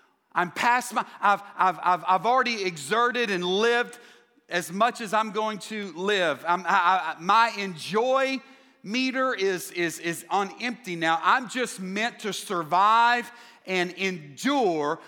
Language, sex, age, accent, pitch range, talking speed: English, male, 40-59, American, 205-300 Hz, 145 wpm